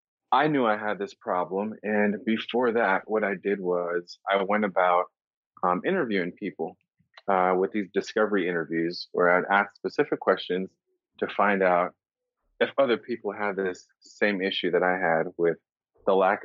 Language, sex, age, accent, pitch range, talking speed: English, male, 30-49, American, 90-105 Hz, 165 wpm